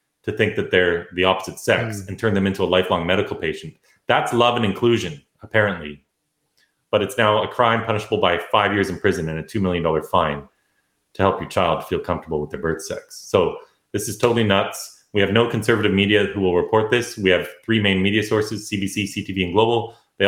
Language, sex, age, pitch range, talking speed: English, male, 30-49, 90-110 Hz, 210 wpm